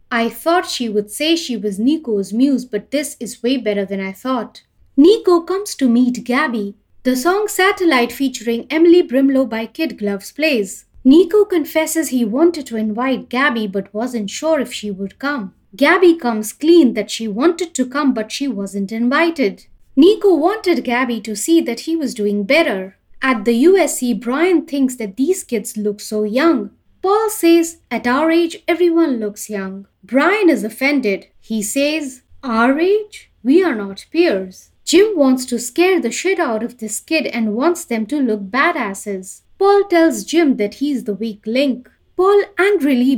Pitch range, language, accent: 220-325 Hz, English, Indian